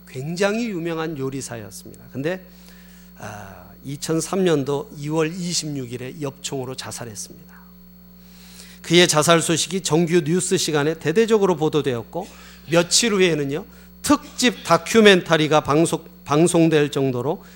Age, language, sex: 40-59, Korean, male